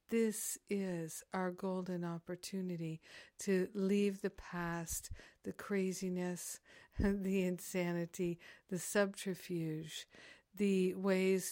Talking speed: 90 wpm